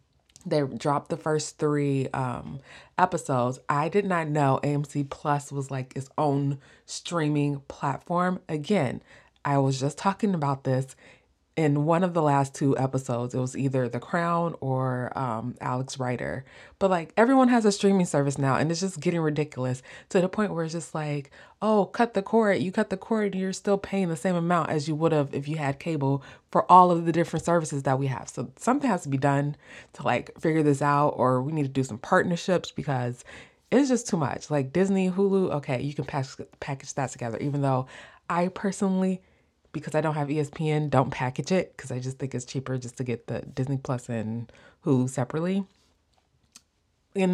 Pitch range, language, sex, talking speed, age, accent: 135-175 Hz, English, female, 195 wpm, 20-39, American